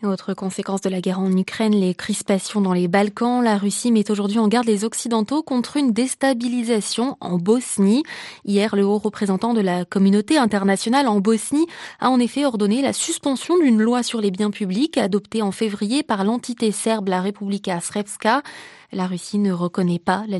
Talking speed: 180 wpm